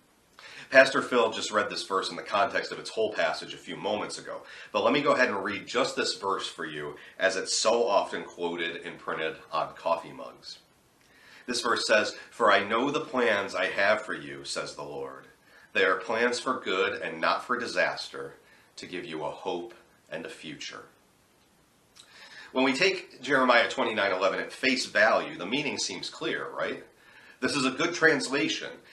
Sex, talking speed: male, 185 wpm